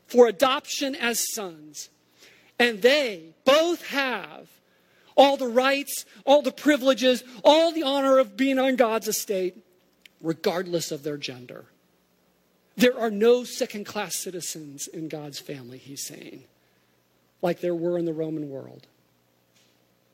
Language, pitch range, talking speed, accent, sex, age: English, 160-250 Hz, 130 wpm, American, male, 50-69